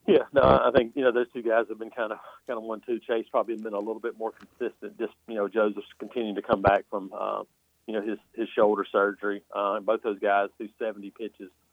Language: English